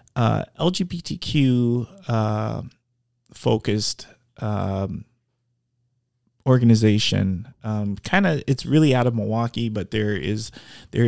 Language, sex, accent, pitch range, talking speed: English, male, American, 105-125 Hz, 95 wpm